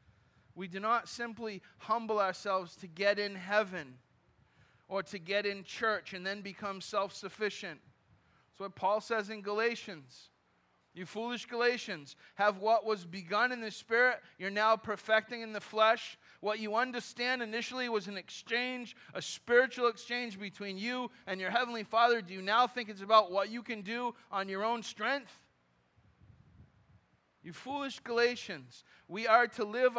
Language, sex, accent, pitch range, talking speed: English, male, American, 170-225 Hz, 155 wpm